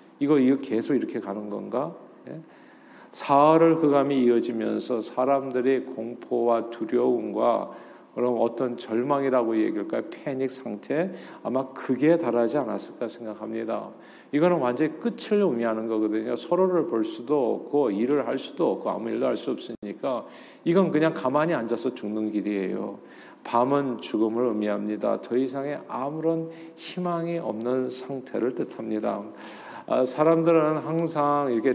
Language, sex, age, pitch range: Korean, male, 40-59, 115-155 Hz